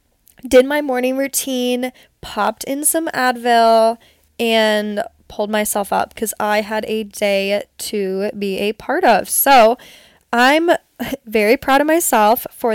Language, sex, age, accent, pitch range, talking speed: English, female, 10-29, American, 210-245 Hz, 135 wpm